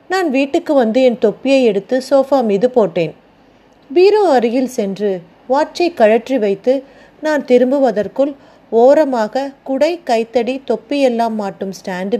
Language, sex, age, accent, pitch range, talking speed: Tamil, female, 30-49, native, 215-280 Hz, 115 wpm